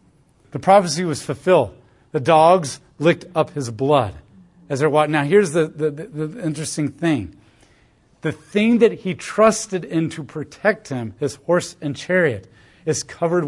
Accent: American